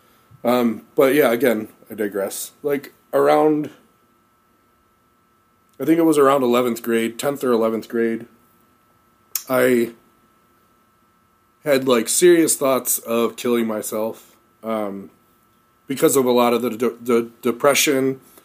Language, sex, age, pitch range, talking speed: English, male, 30-49, 115-130 Hz, 120 wpm